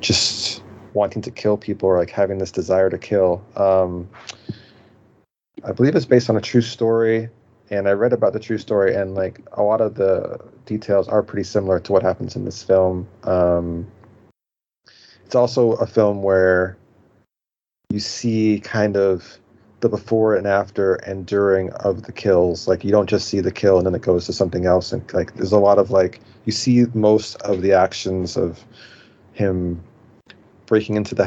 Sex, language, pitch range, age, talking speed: male, English, 95-110 Hz, 30-49, 180 wpm